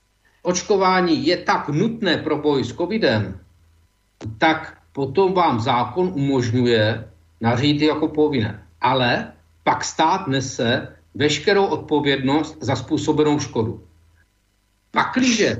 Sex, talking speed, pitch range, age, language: male, 100 wpm, 115-170 Hz, 50-69, Czech